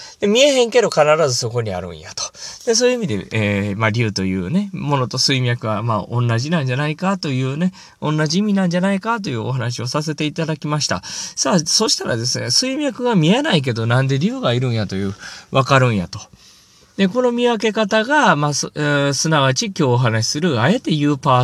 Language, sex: Japanese, male